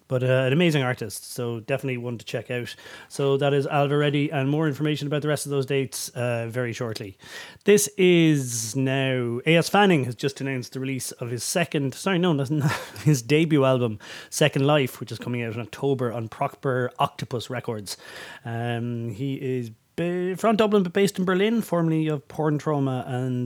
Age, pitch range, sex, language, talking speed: 30-49, 120-150 Hz, male, English, 185 wpm